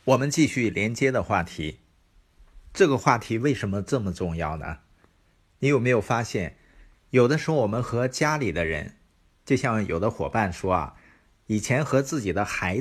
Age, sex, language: 50-69, male, Chinese